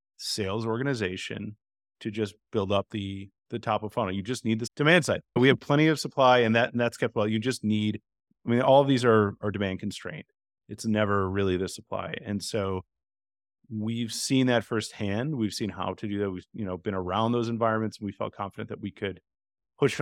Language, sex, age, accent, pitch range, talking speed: English, male, 30-49, American, 100-120 Hz, 215 wpm